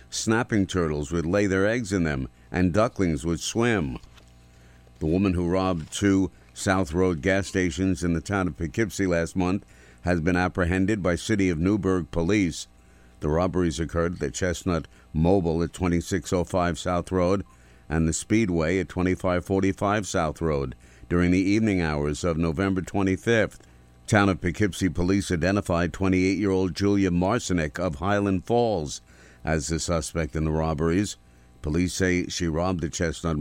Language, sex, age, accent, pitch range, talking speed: English, male, 50-69, American, 75-95 Hz, 150 wpm